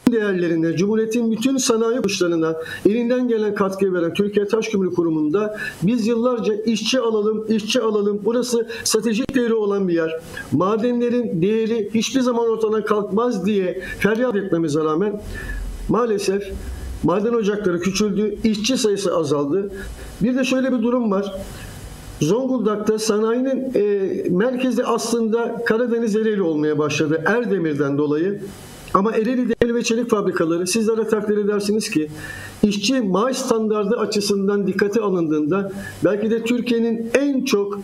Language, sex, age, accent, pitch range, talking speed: Turkish, male, 50-69, native, 190-235 Hz, 125 wpm